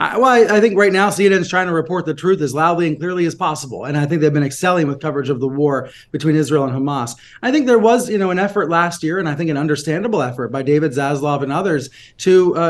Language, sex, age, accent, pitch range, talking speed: English, male, 30-49, American, 140-185 Hz, 270 wpm